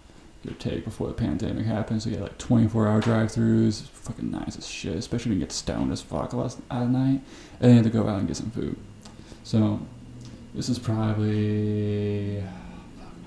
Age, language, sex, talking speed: 20-39, English, male, 175 wpm